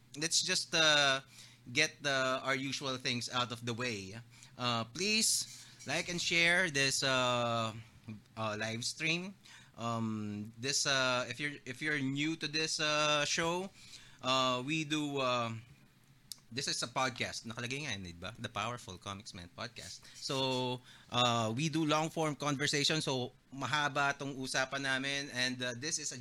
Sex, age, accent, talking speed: male, 20-39, Filipino, 145 wpm